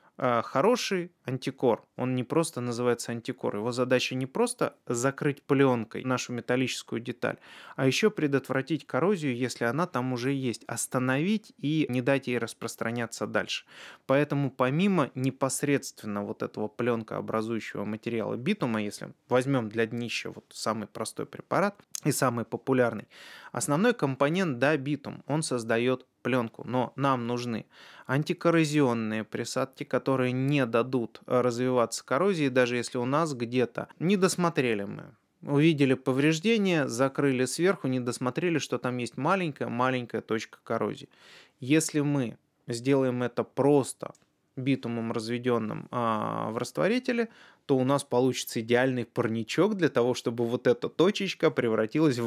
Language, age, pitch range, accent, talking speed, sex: Russian, 20-39, 120-145 Hz, native, 125 wpm, male